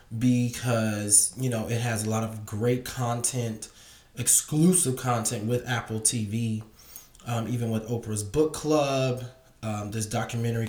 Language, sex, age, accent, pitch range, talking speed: English, male, 20-39, American, 110-130 Hz, 135 wpm